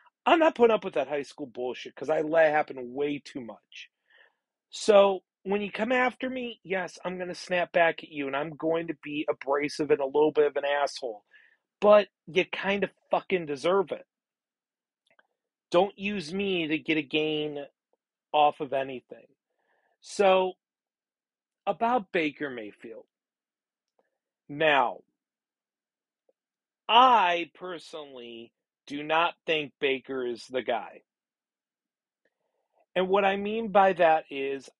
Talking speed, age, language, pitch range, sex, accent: 140 wpm, 40-59, English, 145-190 Hz, male, American